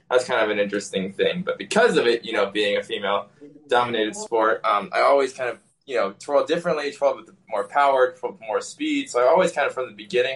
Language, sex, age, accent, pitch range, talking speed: English, male, 20-39, American, 110-170 Hz, 225 wpm